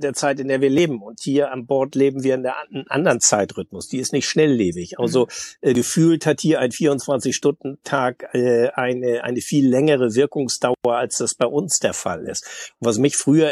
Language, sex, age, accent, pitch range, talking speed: German, male, 50-69, German, 125-145 Hz, 195 wpm